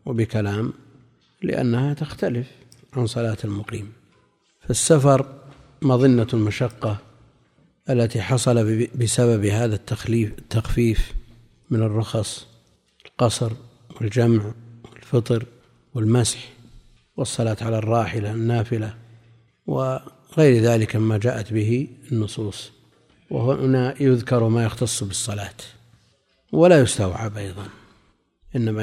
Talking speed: 85 wpm